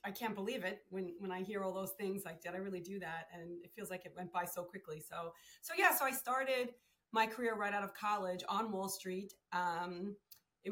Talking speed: 240 wpm